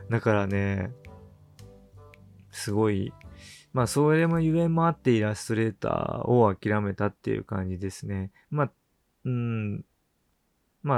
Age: 20-39